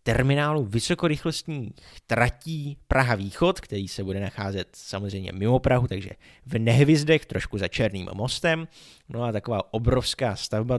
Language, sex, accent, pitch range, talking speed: Czech, male, native, 105-140 Hz, 130 wpm